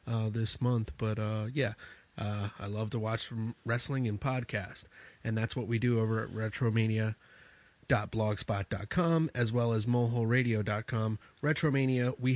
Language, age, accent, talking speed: English, 30-49, American, 135 wpm